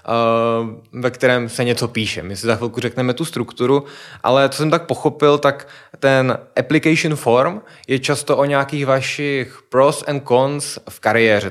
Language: Czech